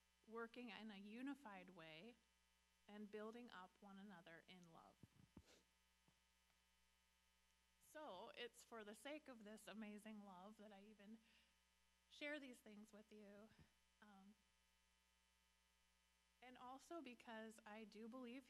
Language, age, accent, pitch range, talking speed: English, 30-49, American, 165-220 Hz, 115 wpm